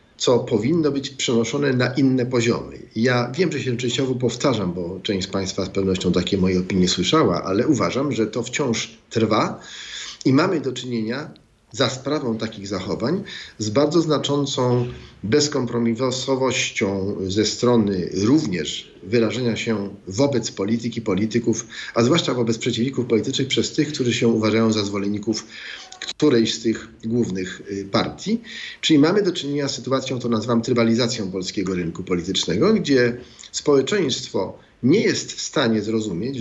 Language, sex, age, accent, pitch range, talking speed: Polish, male, 40-59, native, 100-125 Hz, 140 wpm